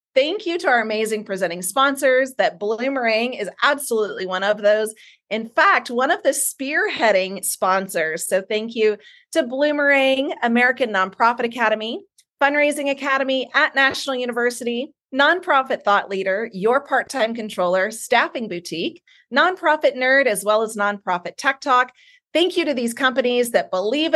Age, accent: 30-49, American